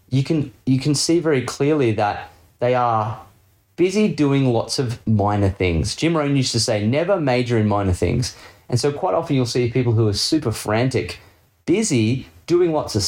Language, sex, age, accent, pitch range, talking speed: English, male, 30-49, Australian, 100-130 Hz, 190 wpm